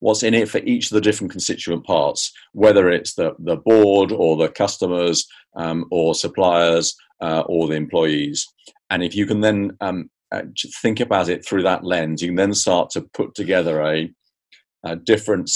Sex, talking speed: male, 180 wpm